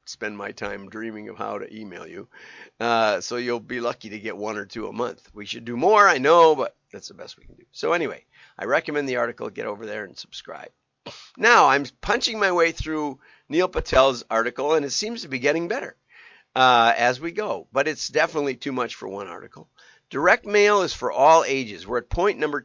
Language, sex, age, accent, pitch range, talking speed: English, male, 50-69, American, 115-165 Hz, 220 wpm